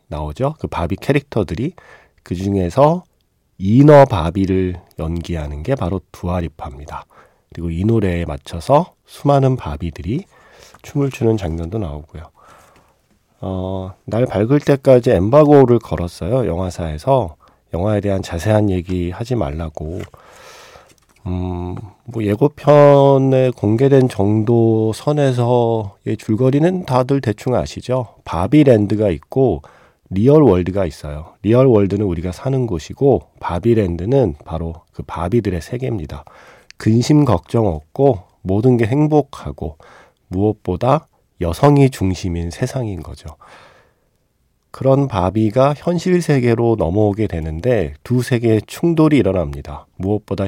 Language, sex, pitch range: Korean, male, 90-130 Hz